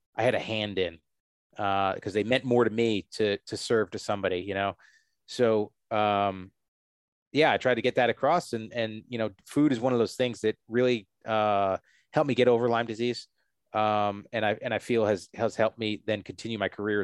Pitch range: 105-130 Hz